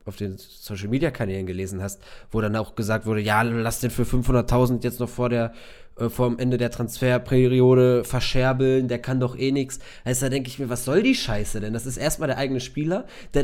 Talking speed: 205 wpm